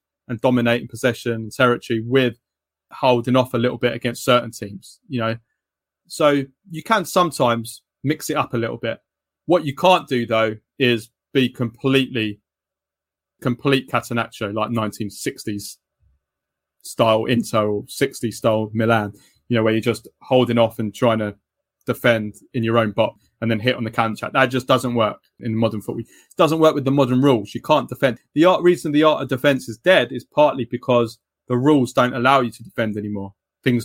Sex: male